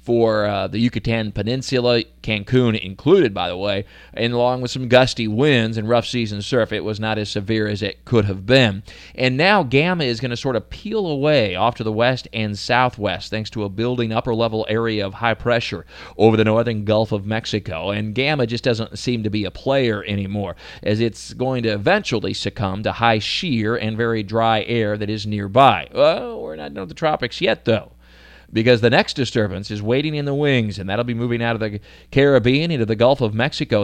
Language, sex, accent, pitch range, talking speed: English, male, American, 105-125 Hz, 205 wpm